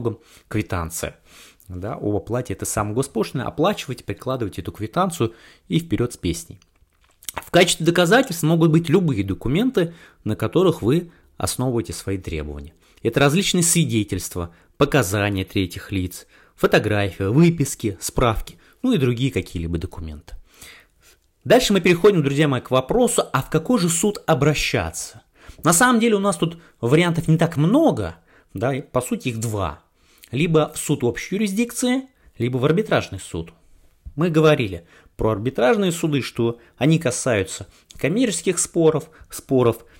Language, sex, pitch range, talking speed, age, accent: Russian, male, 95-160 Hz, 135 wpm, 30-49, native